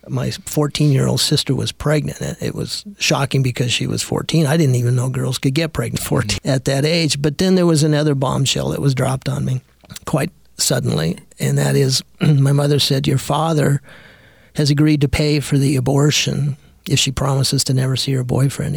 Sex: male